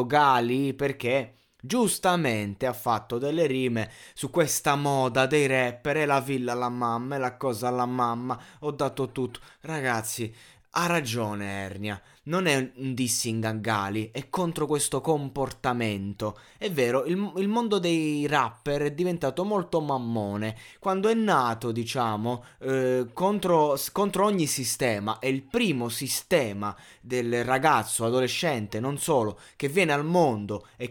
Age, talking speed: 20-39, 140 wpm